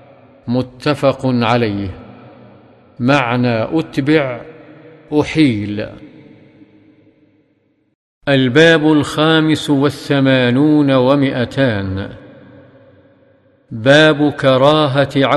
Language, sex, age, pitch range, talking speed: English, male, 50-69, 130-150 Hz, 45 wpm